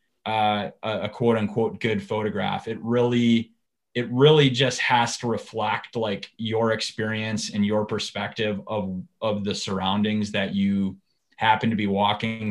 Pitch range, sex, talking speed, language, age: 105-115 Hz, male, 150 wpm, English, 20-39